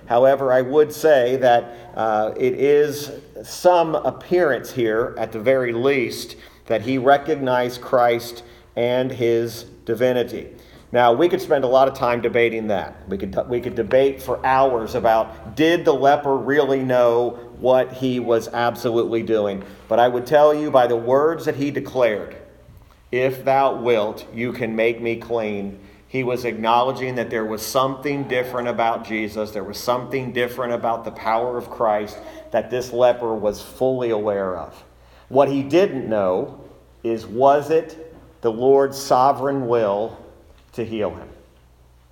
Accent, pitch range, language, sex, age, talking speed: American, 115-135 Hz, English, male, 40-59, 155 wpm